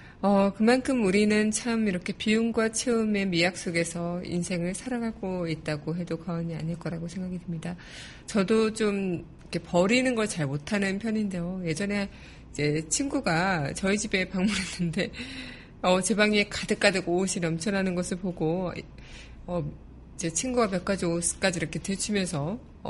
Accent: native